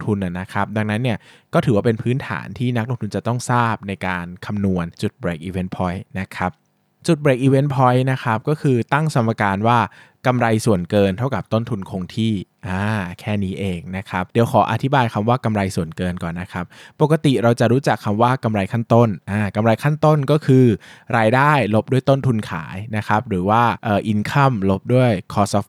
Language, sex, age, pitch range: Thai, male, 20-39, 95-125 Hz